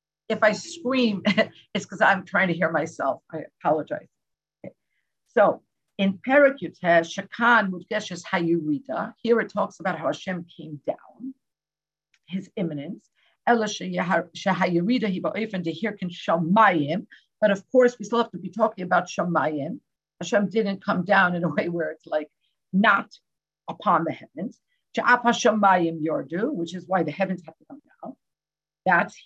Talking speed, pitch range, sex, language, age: 125 wpm, 175-235 Hz, female, English, 50-69